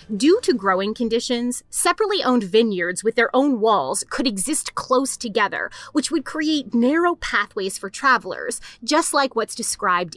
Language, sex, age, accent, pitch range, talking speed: English, female, 30-49, American, 205-285 Hz, 155 wpm